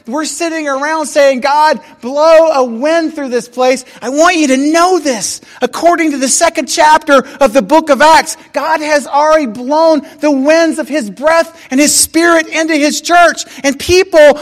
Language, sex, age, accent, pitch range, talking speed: English, male, 40-59, American, 275-320 Hz, 185 wpm